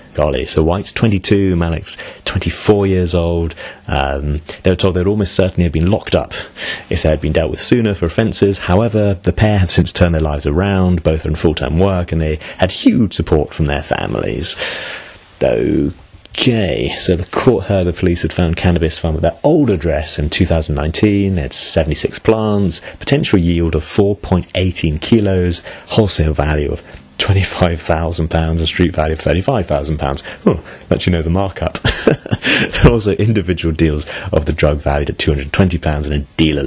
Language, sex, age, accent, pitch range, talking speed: English, male, 30-49, British, 80-95 Hz, 180 wpm